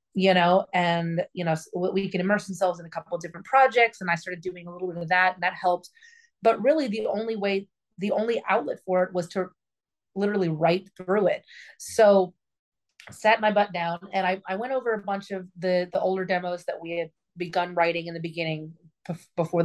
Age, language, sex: 30-49, English, female